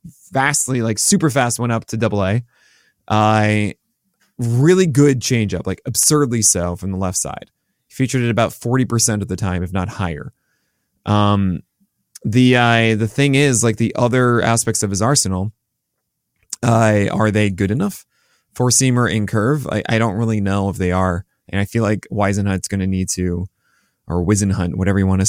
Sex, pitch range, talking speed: male, 95-125 Hz, 185 wpm